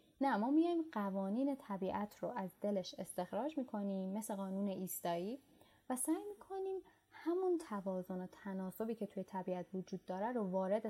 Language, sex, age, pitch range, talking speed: Persian, female, 10-29, 195-270 Hz, 150 wpm